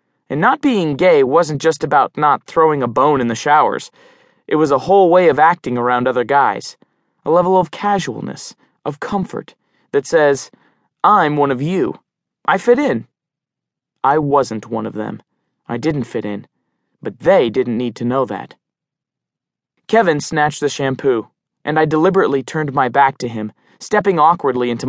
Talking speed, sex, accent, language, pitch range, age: 170 wpm, male, American, English, 125-175 Hz, 20-39